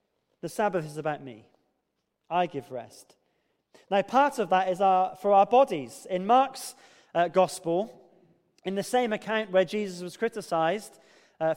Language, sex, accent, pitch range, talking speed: English, male, British, 165-230 Hz, 150 wpm